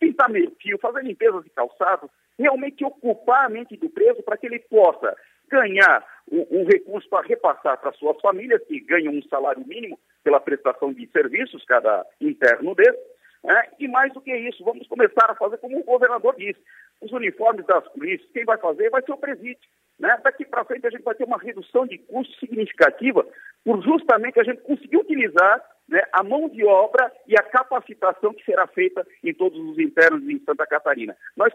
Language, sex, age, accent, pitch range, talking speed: Portuguese, male, 50-69, Brazilian, 220-345 Hz, 185 wpm